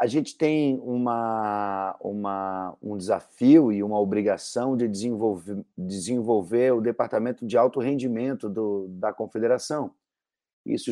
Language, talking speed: Portuguese, 120 wpm